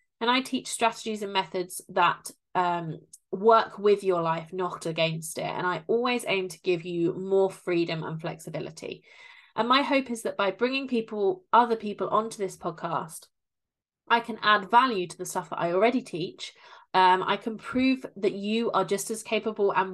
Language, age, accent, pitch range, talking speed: English, 20-39, British, 175-225 Hz, 185 wpm